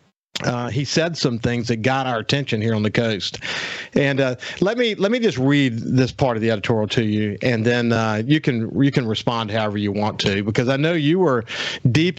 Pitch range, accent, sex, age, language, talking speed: 110-140 Hz, American, male, 50-69, English, 225 wpm